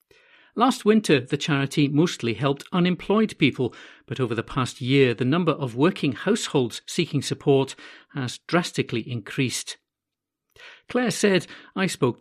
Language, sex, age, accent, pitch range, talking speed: English, male, 50-69, British, 130-180 Hz, 135 wpm